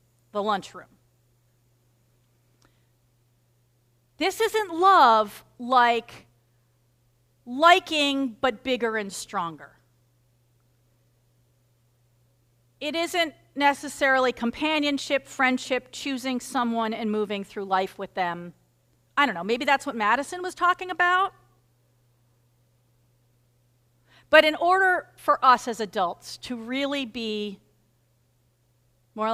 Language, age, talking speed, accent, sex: English, 40-59, 90 wpm, American, female